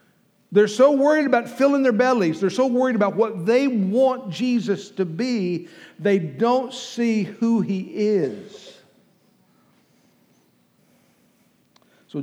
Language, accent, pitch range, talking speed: English, American, 145-205 Hz, 120 wpm